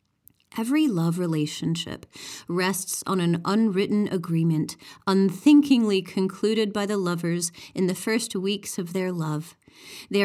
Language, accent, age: English, American, 30-49